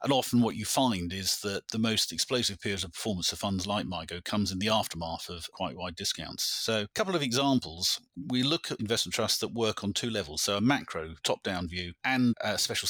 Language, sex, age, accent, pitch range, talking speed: English, male, 30-49, British, 90-110 Hz, 225 wpm